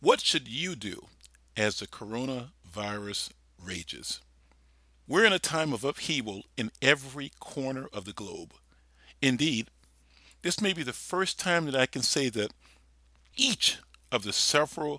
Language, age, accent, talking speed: English, 50-69, American, 145 wpm